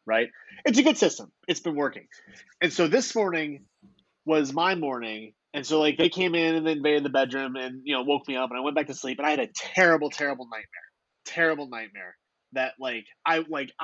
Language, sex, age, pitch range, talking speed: English, male, 30-49, 130-175 Hz, 215 wpm